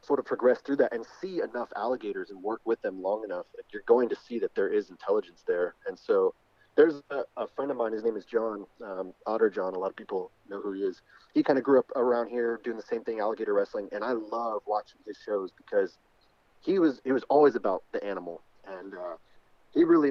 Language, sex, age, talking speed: English, male, 30-49, 240 wpm